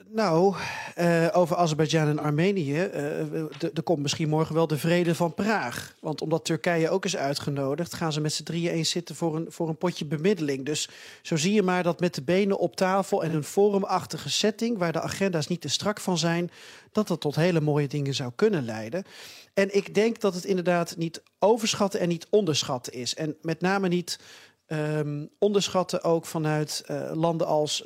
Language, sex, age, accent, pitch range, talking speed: Dutch, male, 40-59, Dutch, 150-180 Hz, 190 wpm